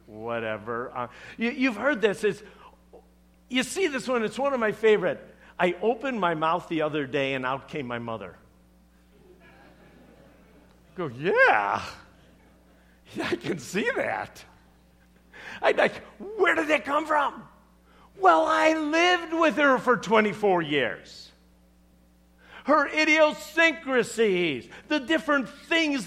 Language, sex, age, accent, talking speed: English, male, 50-69, American, 125 wpm